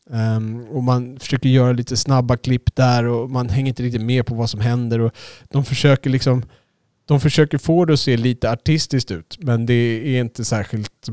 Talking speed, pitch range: 200 wpm, 115-135 Hz